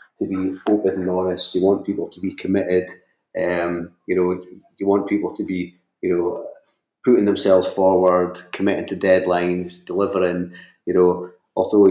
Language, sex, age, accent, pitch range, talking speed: English, male, 30-49, British, 90-100 Hz, 155 wpm